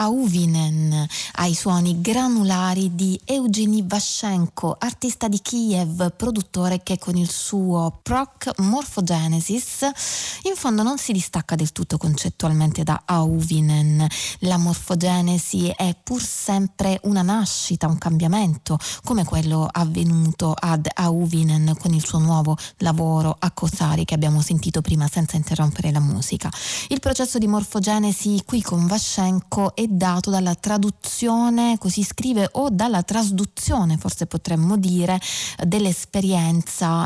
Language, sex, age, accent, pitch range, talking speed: Italian, female, 20-39, native, 165-200 Hz, 125 wpm